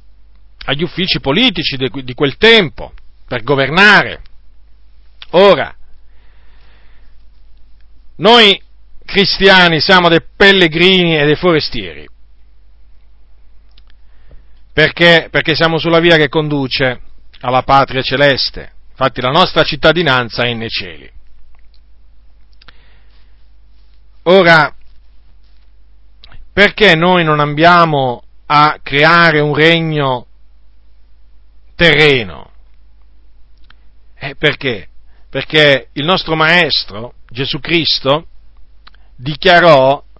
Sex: male